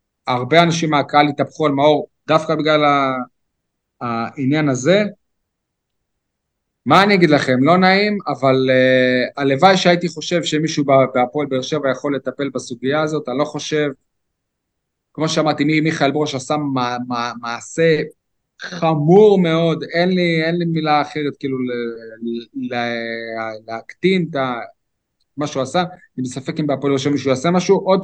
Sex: male